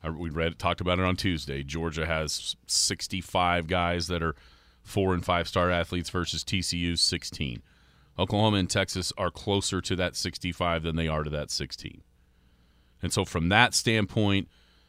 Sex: male